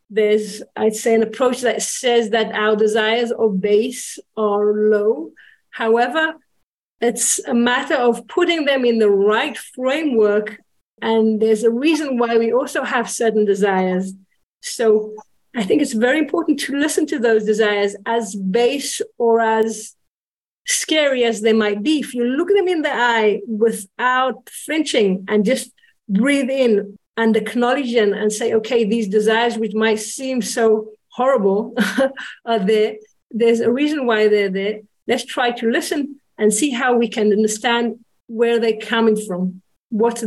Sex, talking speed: female, 155 wpm